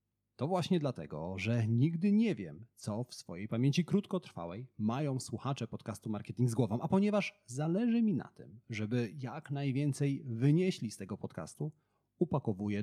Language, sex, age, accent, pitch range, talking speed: Polish, male, 30-49, native, 105-145 Hz, 150 wpm